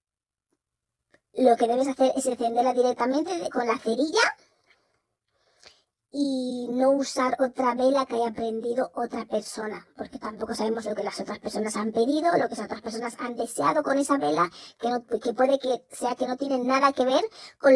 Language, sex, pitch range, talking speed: Spanish, male, 235-270 Hz, 180 wpm